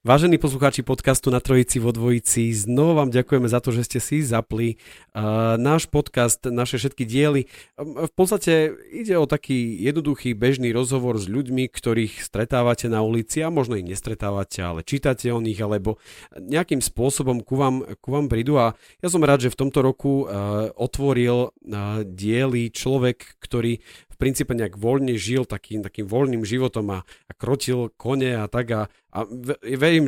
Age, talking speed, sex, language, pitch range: 40-59, 160 wpm, male, Slovak, 100-135 Hz